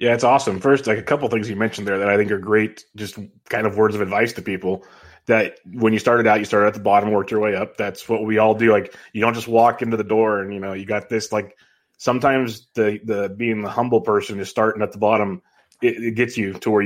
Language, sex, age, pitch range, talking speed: English, male, 20-39, 100-110 Hz, 275 wpm